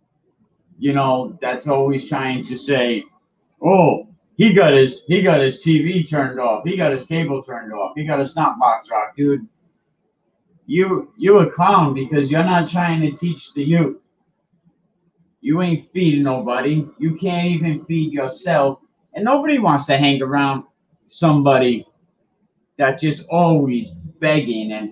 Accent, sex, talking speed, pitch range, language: American, male, 150 wpm, 140-180 Hz, English